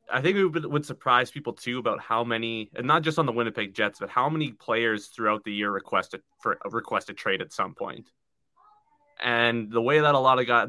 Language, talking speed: English, 225 wpm